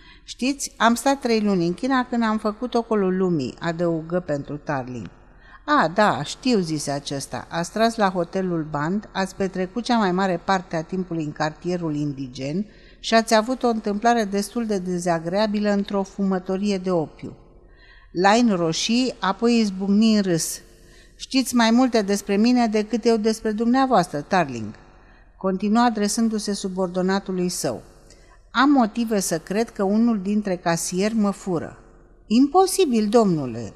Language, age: Romanian, 50-69